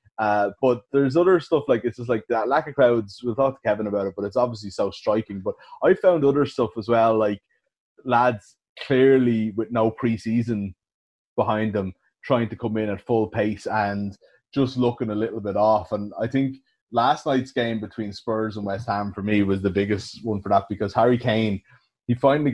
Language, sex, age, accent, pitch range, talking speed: English, male, 20-39, Irish, 105-130 Hz, 205 wpm